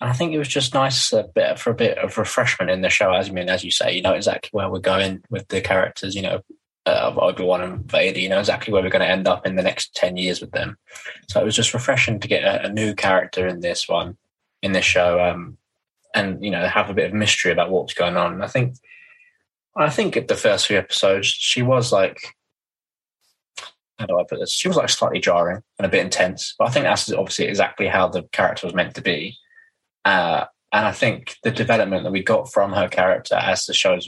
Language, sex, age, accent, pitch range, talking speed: English, male, 20-39, British, 95-120 Hz, 240 wpm